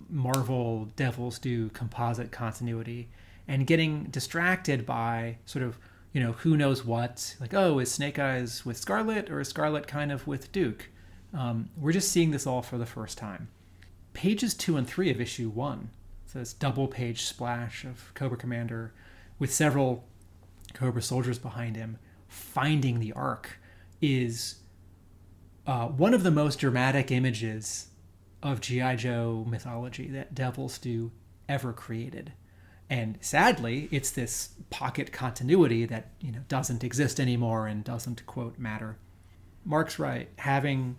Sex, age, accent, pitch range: male, 30-49, American, 110-135 Hz